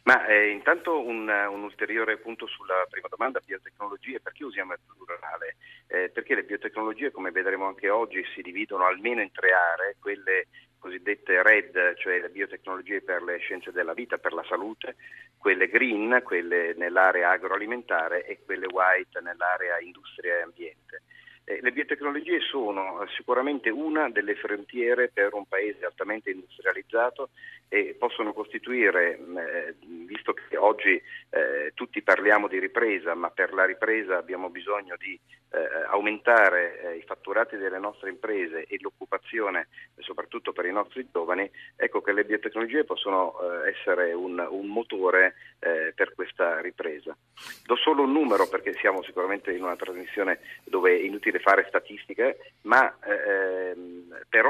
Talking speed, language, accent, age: 145 wpm, Italian, native, 40-59